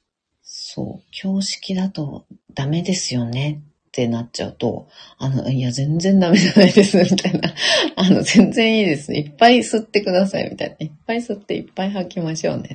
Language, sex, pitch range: Japanese, female, 130-185 Hz